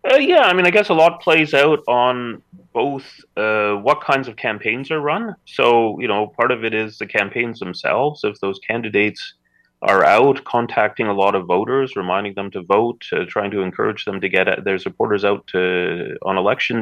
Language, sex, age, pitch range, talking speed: English, male, 30-49, 95-120 Hz, 200 wpm